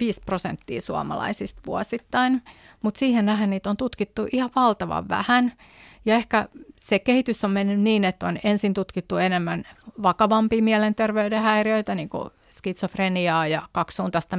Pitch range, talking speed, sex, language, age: 175-220 Hz, 140 wpm, female, Finnish, 30-49